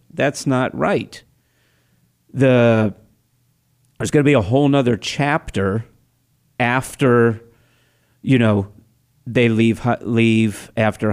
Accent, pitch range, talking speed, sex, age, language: American, 115-140 Hz, 100 wpm, male, 50-69, English